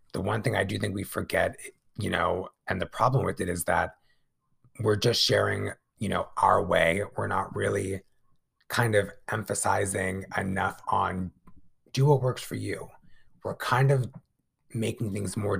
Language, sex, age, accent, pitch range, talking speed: English, male, 30-49, American, 100-125 Hz, 165 wpm